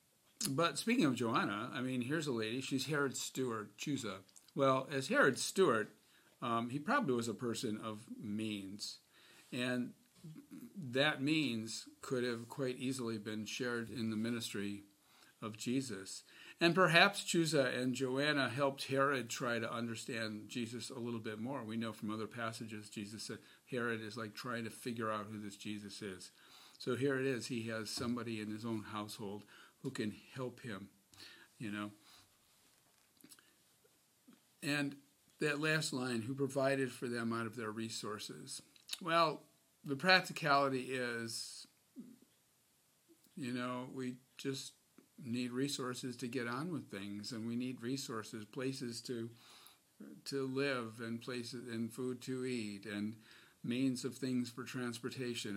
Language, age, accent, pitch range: English, 50-69, American, 110-135 Hz